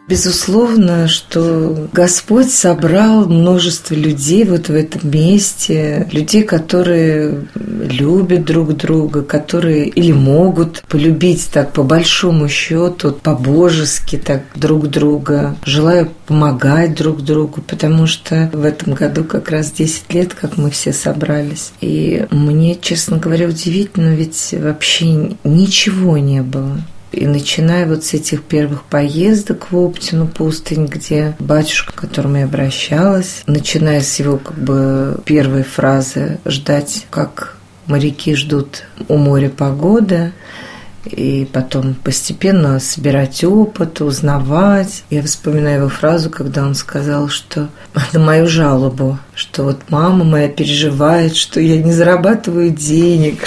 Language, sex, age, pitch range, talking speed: Russian, female, 40-59, 145-170 Hz, 125 wpm